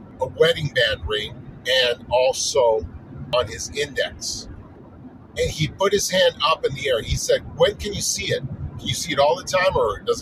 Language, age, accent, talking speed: English, 50-69, American, 200 wpm